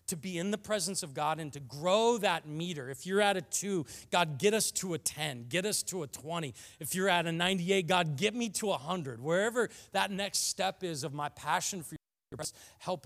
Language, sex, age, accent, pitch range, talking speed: English, male, 40-59, American, 125-170 Hz, 235 wpm